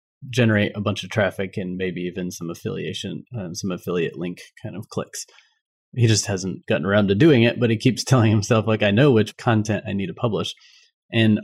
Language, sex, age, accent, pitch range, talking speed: English, male, 30-49, American, 100-115 Hz, 210 wpm